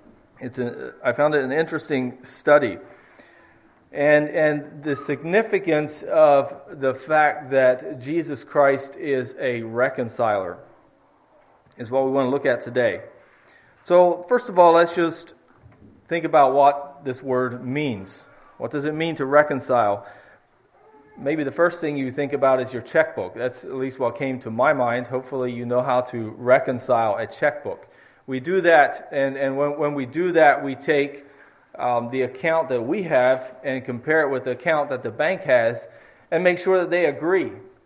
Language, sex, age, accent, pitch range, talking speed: English, male, 40-59, American, 130-160 Hz, 170 wpm